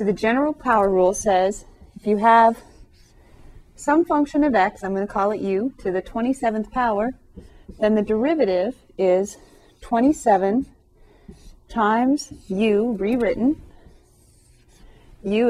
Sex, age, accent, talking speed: female, 30-49, American, 125 wpm